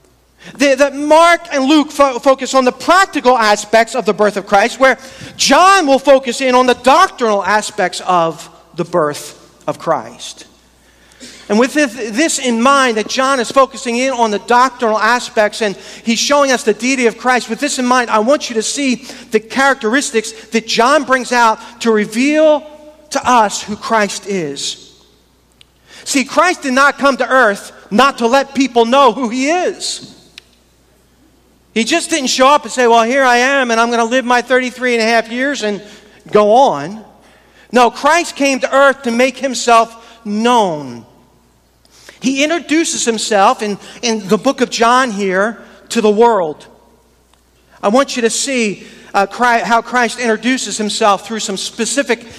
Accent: American